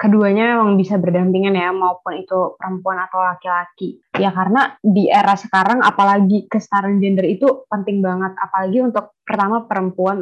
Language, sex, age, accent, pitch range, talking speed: Indonesian, female, 20-39, native, 185-210 Hz, 145 wpm